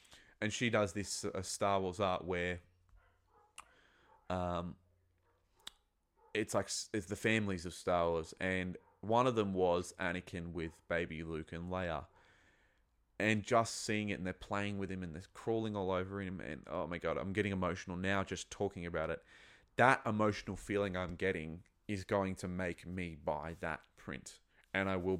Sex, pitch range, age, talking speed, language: male, 90-105 Hz, 20-39, 170 wpm, English